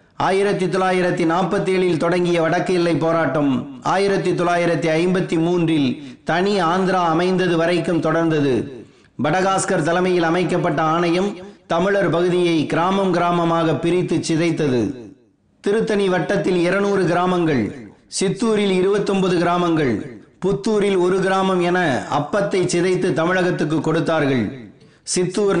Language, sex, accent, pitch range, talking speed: Tamil, male, native, 165-190 Hz, 100 wpm